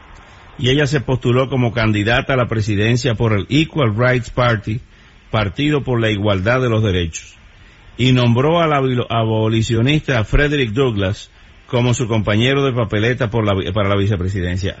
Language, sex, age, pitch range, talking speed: English, male, 50-69, 100-135 Hz, 145 wpm